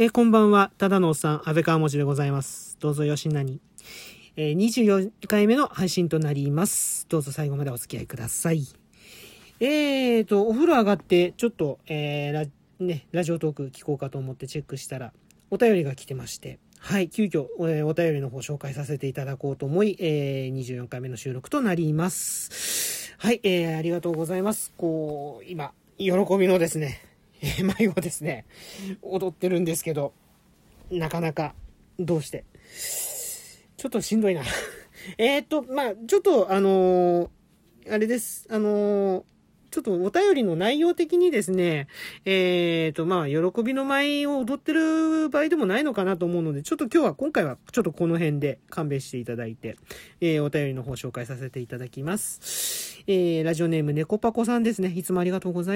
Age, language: 40-59, Japanese